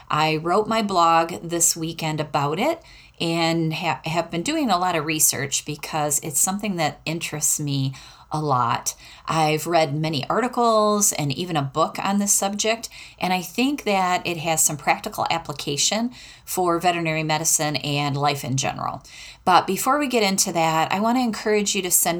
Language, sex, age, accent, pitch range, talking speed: English, female, 30-49, American, 155-195 Hz, 175 wpm